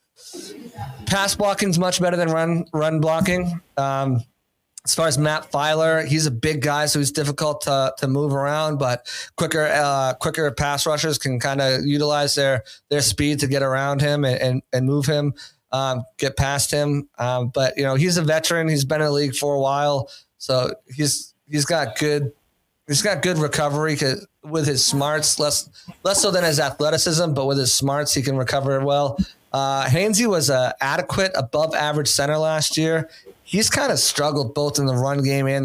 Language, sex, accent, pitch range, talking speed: English, male, American, 135-155 Hz, 190 wpm